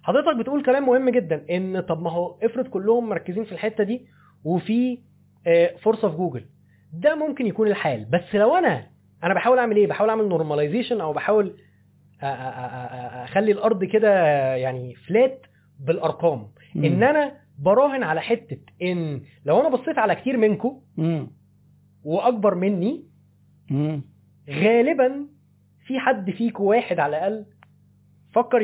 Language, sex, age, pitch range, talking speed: Arabic, male, 20-39, 150-235 Hz, 130 wpm